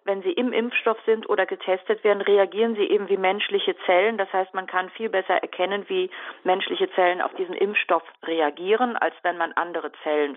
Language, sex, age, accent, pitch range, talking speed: German, female, 40-59, German, 180-220 Hz, 190 wpm